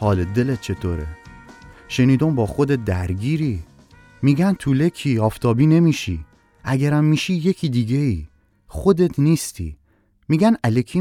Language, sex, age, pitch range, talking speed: Persian, male, 30-49, 95-125 Hz, 110 wpm